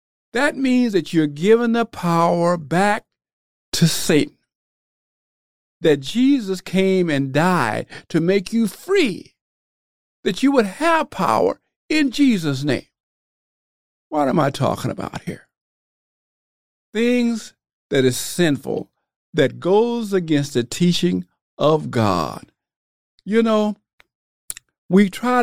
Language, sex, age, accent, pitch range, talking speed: English, male, 50-69, American, 160-245 Hz, 115 wpm